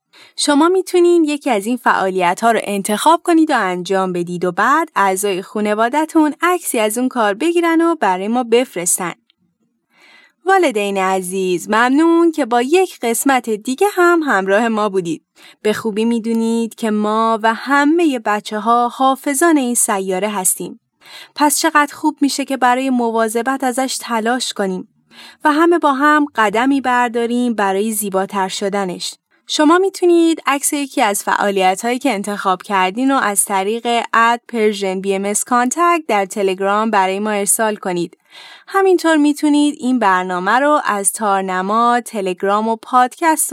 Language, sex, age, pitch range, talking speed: Persian, female, 10-29, 200-290 Hz, 140 wpm